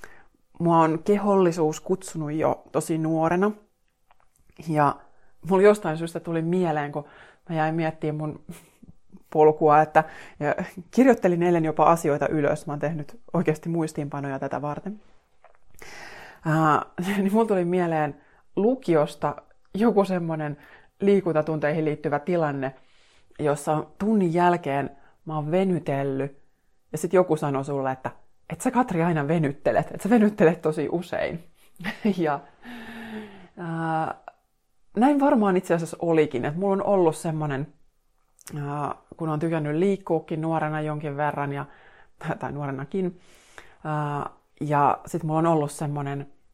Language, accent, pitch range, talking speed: Finnish, native, 145-180 Hz, 120 wpm